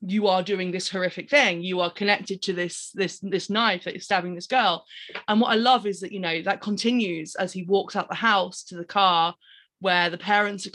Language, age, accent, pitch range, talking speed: English, 20-39, British, 180-220 Hz, 230 wpm